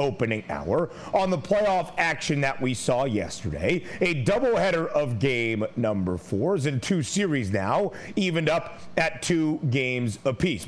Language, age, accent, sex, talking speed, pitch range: English, 40-59, American, male, 145 wpm, 140-180 Hz